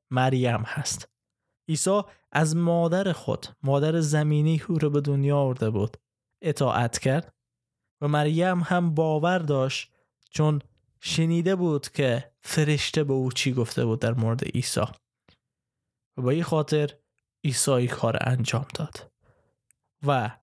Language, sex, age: Persian, male, 20-39